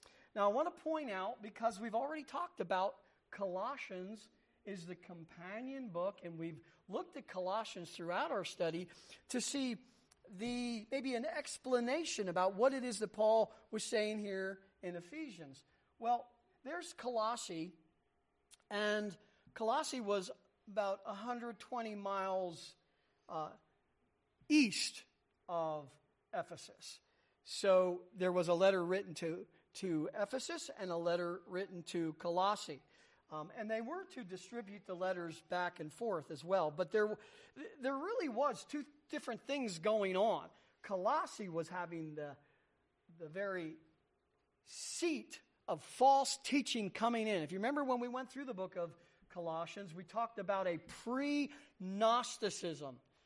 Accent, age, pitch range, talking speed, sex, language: American, 40-59, 175-240 Hz, 135 wpm, male, English